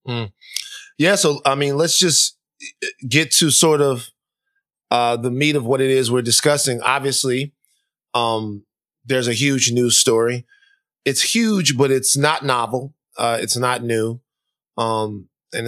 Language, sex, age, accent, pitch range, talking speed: English, male, 20-39, American, 115-150 Hz, 150 wpm